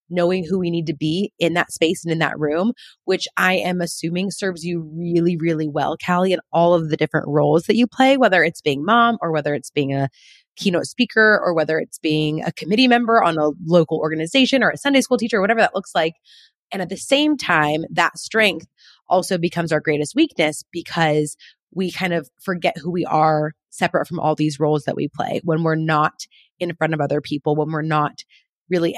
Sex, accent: female, American